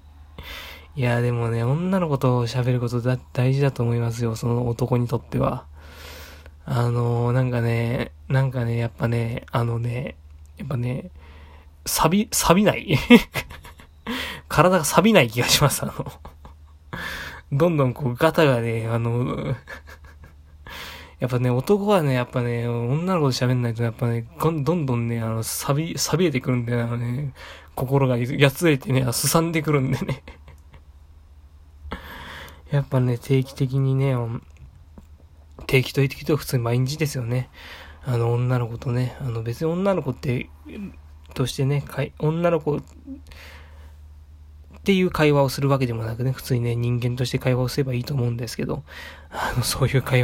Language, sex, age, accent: Japanese, male, 20-39, native